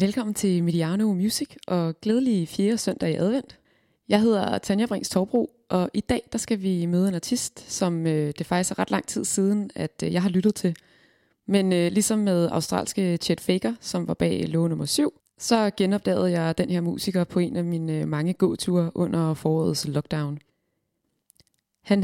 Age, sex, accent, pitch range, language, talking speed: 20-39, female, native, 165-205 Hz, Danish, 185 wpm